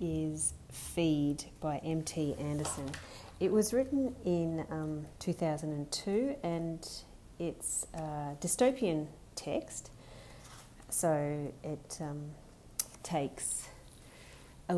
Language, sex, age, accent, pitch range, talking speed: English, female, 30-49, Australian, 145-175 Hz, 85 wpm